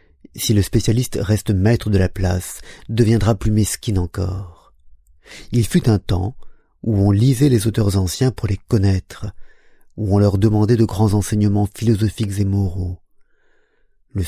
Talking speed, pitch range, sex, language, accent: 150 wpm, 95-115 Hz, male, French, French